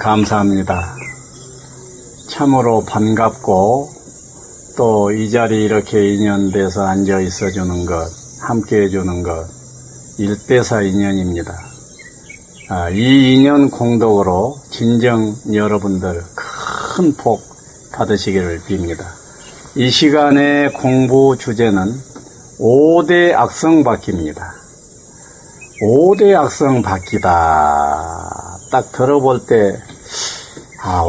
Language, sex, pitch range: Korean, male, 95-130 Hz